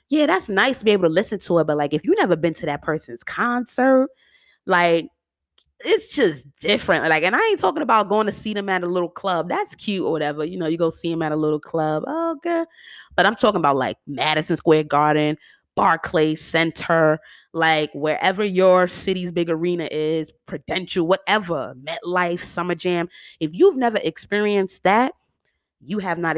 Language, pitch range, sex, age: English, 155-195 Hz, female, 20-39